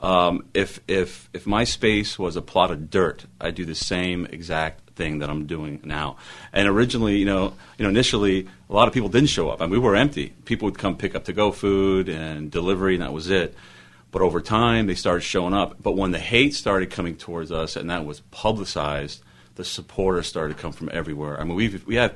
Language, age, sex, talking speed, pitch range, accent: English, 40-59, male, 235 wpm, 85-105 Hz, American